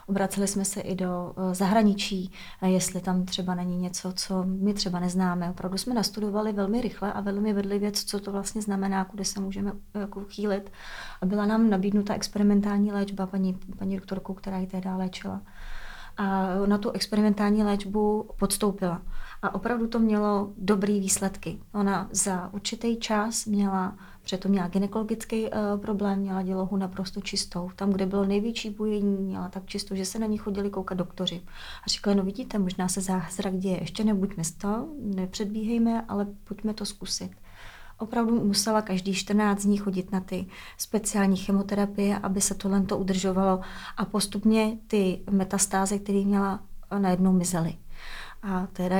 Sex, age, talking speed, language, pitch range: female, 30-49, 155 wpm, Czech, 190-205 Hz